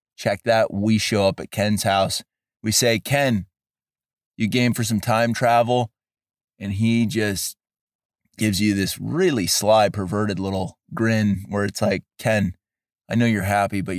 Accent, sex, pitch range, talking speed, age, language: American, male, 100-120 Hz, 160 wpm, 30-49, English